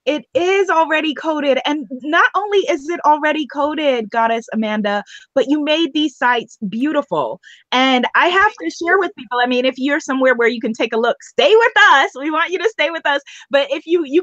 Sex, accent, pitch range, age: female, American, 230-305 Hz, 20-39